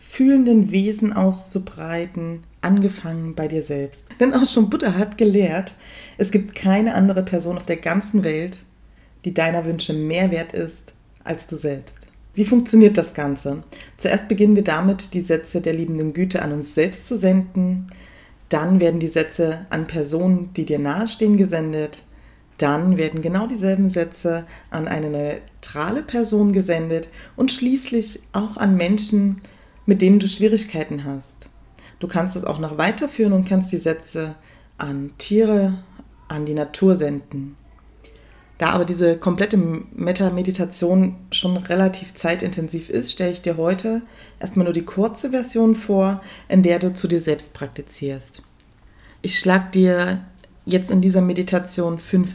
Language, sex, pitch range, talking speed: German, female, 160-195 Hz, 150 wpm